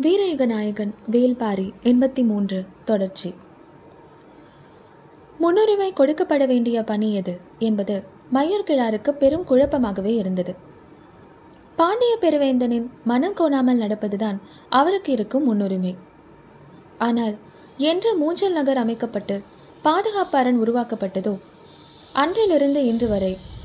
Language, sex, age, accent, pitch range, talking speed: Tamil, female, 20-39, native, 205-290 Hz, 85 wpm